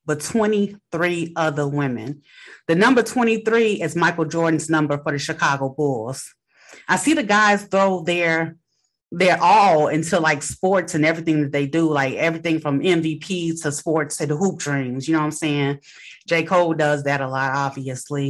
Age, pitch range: 30-49, 150-200 Hz